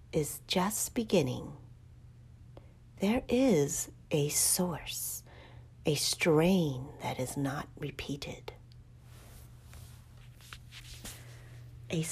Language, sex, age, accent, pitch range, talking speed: English, female, 40-59, American, 120-155 Hz, 70 wpm